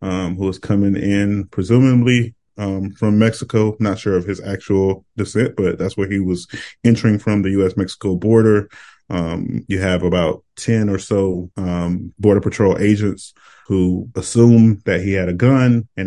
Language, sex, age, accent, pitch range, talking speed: English, male, 20-39, American, 90-100 Hz, 170 wpm